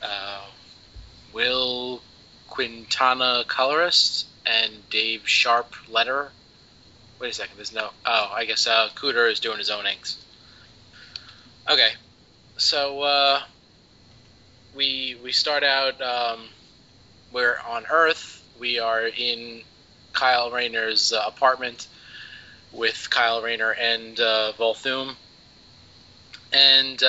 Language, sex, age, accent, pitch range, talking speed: English, male, 20-39, American, 110-130 Hz, 105 wpm